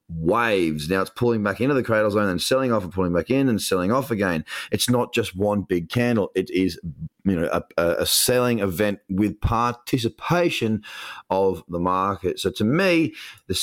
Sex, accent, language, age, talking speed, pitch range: male, Australian, English, 30-49, 190 wpm, 95-120 Hz